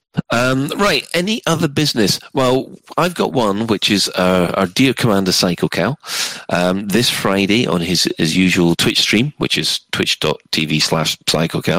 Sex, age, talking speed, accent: male, 40-59, 155 wpm, British